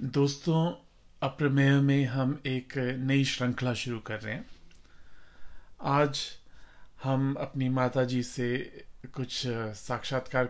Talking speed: 105 wpm